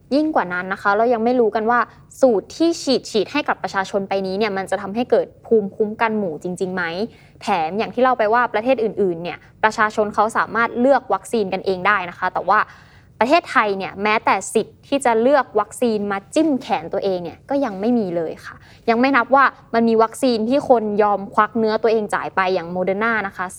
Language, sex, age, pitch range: Thai, female, 20-39, 195-255 Hz